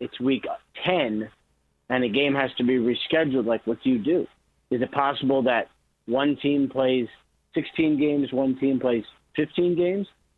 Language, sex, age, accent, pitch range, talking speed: English, male, 30-49, American, 120-150 Hz, 170 wpm